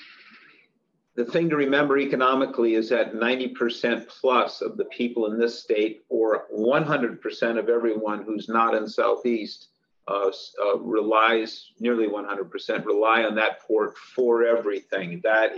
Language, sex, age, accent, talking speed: English, male, 50-69, American, 135 wpm